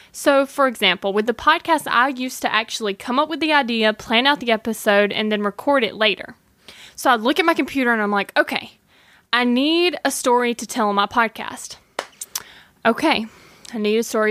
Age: 10-29